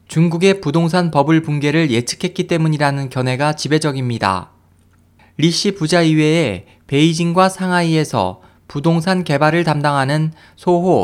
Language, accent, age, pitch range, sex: Korean, native, 20-39, 125-175 Hz, male